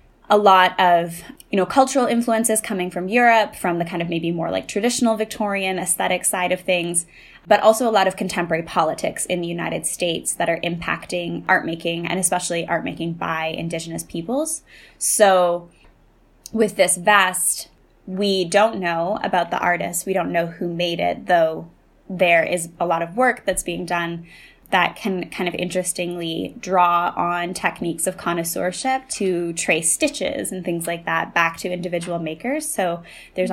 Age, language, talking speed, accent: 20-39, English, 170 wpm, American